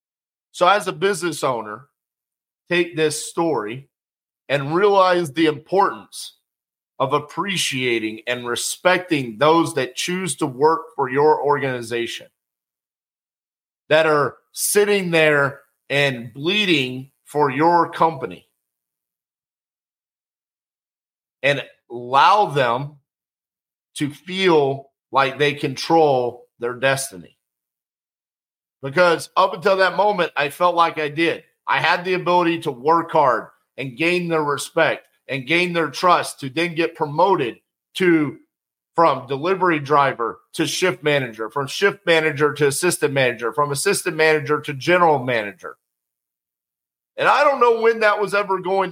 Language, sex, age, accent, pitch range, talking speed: English, male, 40-59, American, 140-175 Hz, 125 wpm